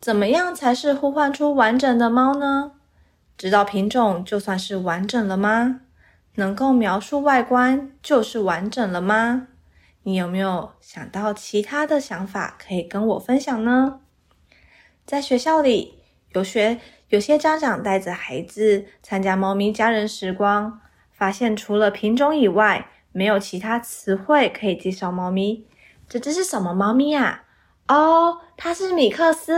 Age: 20-39